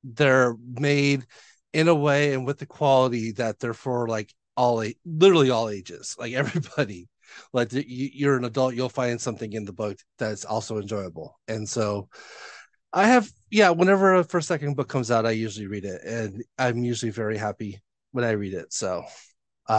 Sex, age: male, 30-49